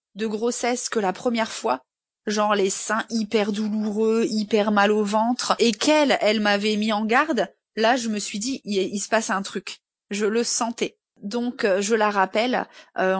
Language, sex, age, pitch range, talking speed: French, female, 20-39, 200-245 Hz, 185 wpm